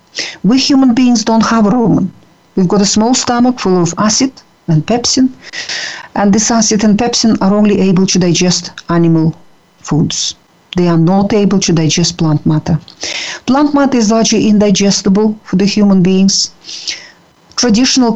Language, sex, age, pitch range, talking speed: English, female, 50-69, 170-220 Hz, 155 wpm